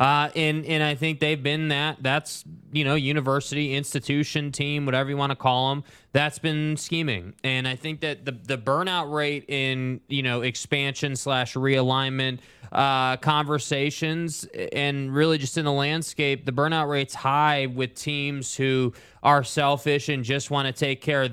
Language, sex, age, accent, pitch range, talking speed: English, male, 20-39, American, 135-155 Hz, 170 wpm